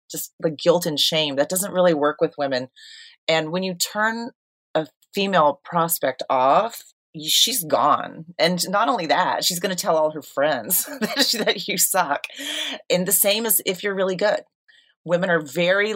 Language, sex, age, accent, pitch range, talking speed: English, female, 30-49, American, 150-195 Hz, 180 wpm